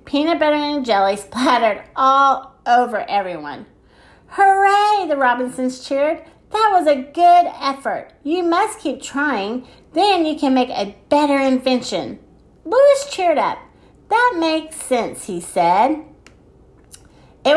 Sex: female